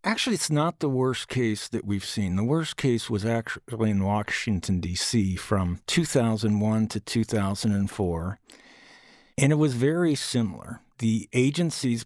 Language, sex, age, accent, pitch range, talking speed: English, male, 50-69, American, 95-120 Hz, 140 wpm